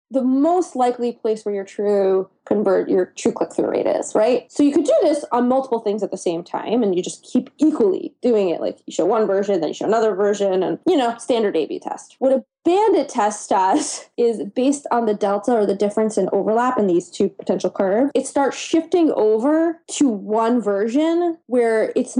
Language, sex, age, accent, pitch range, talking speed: English, female, 20-39, American, 200-275 Hz, 210 wpm